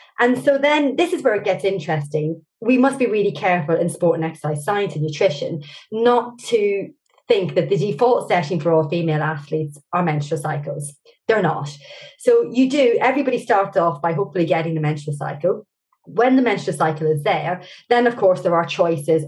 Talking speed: 190 wpm